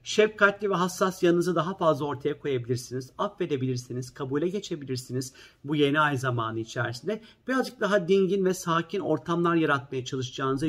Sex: male